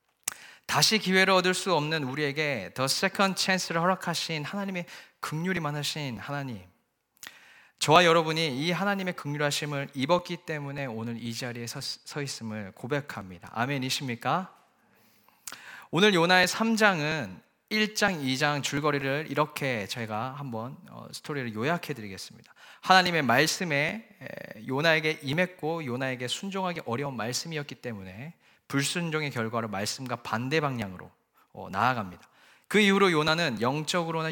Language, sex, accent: Korean, male, native